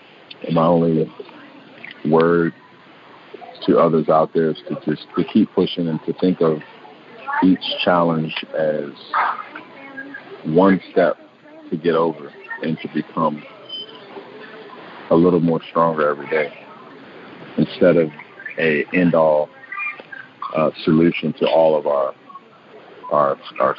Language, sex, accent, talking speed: English, male, American, 120 wpm